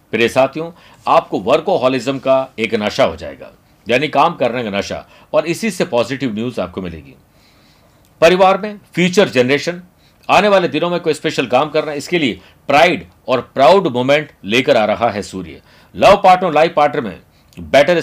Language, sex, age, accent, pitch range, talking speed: Hindi, male, 50-69, native, 125-170 Hz, 165 wpm